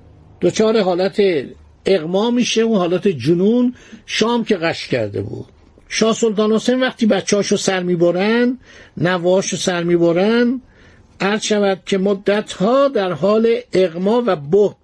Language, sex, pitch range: Persian, male, 180-225 Hz